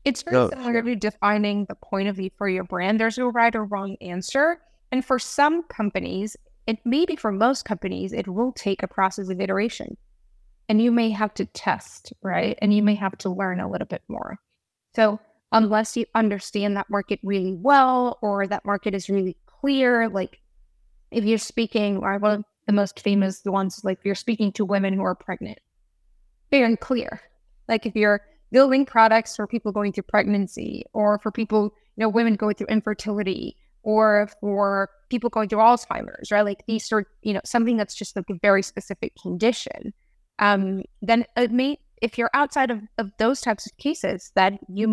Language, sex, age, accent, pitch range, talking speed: English, female, 20-39, American, 195-230 Hz, 185 wpm